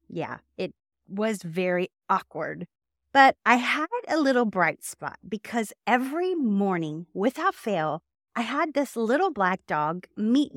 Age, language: 30-49, English